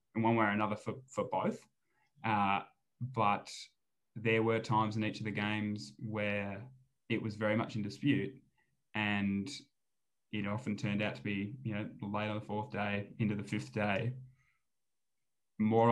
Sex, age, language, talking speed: male, 10-29, English, 160 wpm